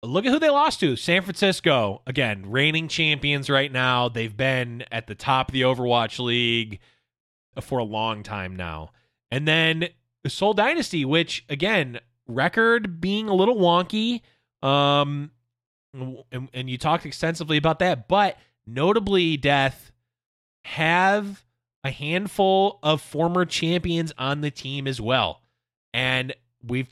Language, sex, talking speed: English, male, 140 wpm